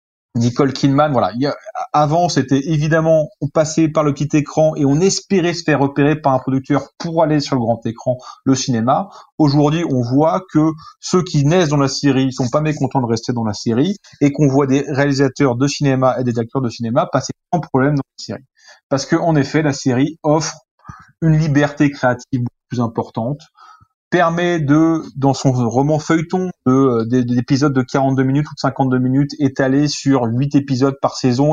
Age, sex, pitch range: 30-49, male, 125-155 Hz